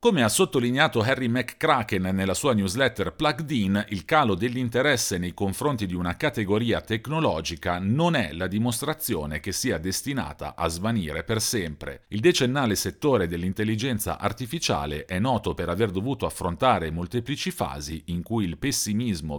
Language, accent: Italian, native